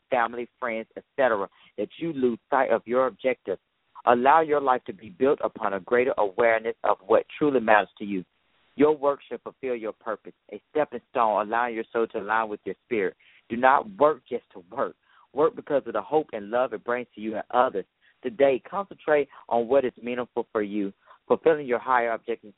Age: 40-59